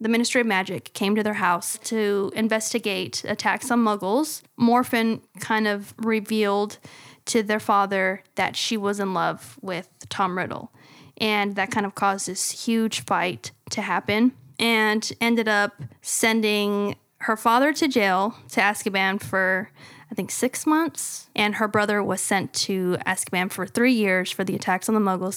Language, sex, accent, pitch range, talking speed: English, female, American, 195-225 Hz, 165 wpm